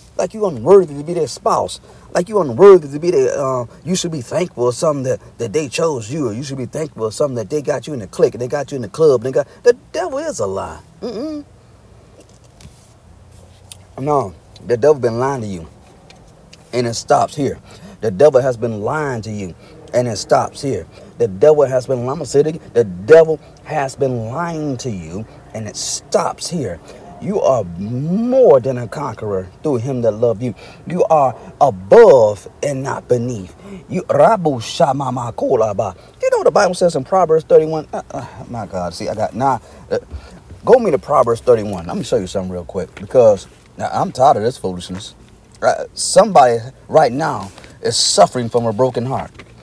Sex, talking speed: male, 195 wpm